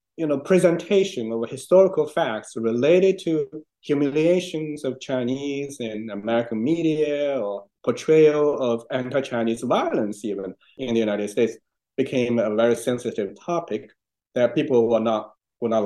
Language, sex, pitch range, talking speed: English, male, 110-140 Hz, 130 wpm